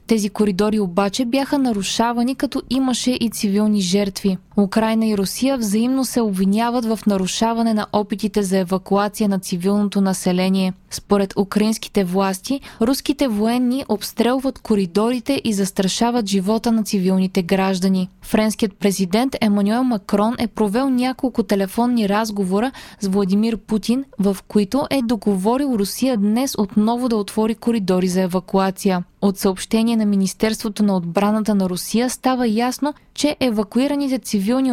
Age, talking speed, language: 20-39, 130 wpm, Bulgarian